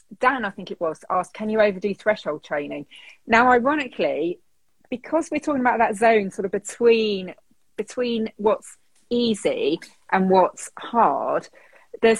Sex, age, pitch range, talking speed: female, 30-49, 160-215 Hz, 145 wpm